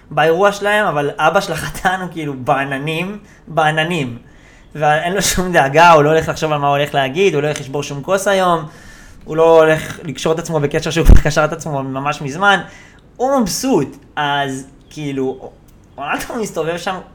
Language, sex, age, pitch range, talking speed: Hebrew, male, 20-39, 155-215 Hz, 175 wpm